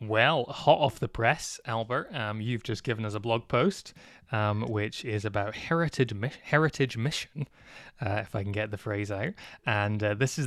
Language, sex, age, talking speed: English, male, 20-39, 190 wpm